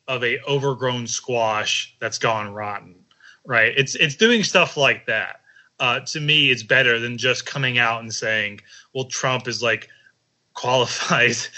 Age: 20-39